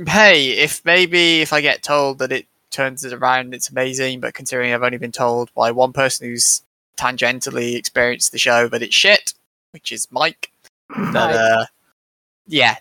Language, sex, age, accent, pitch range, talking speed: English, male, 10-29, British, 120-145 Hz, 175 wpm